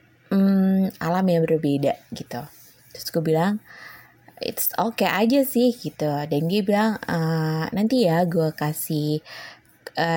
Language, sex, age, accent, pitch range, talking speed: Indonesian, female, 20-39, native, 155-185 Hz, 130 wpm